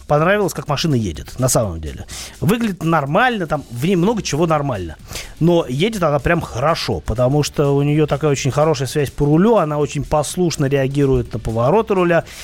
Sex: male